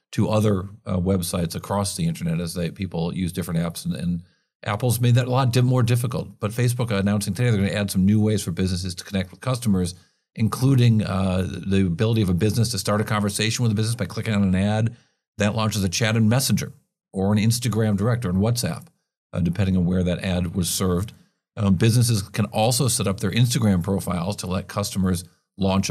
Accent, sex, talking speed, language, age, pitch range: American, male, 215 wpm, English, 50-69, 95-115 Hz